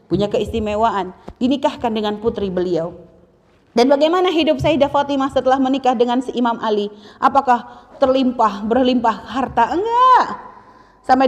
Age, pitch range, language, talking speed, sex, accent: 30-49, 195-250 Hz, Indonesian, 120 wpm, female, native